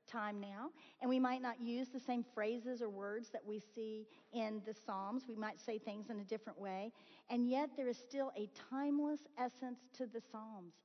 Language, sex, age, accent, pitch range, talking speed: English, female, 50-69, American, 210-255 Hz, 205 wpm